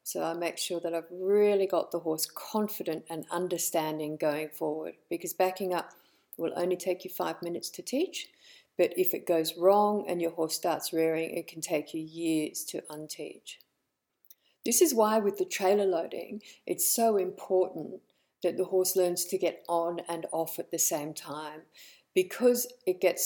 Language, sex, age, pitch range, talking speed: English, female, 50-69, 165-200 Hz, 180 wpm